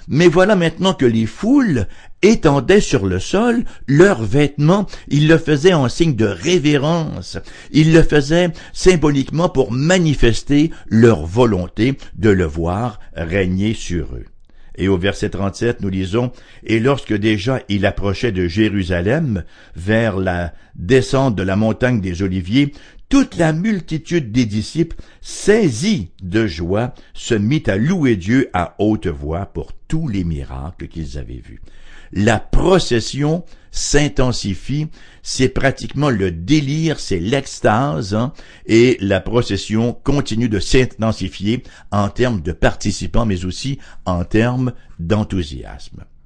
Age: 60-79